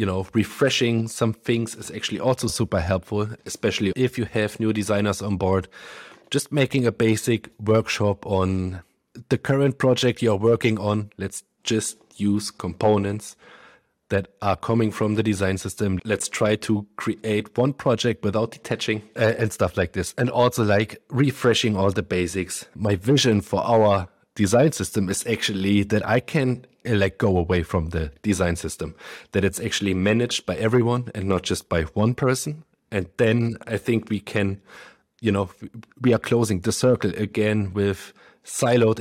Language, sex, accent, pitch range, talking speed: English, male, German, 100-115 Hz, 165 wpm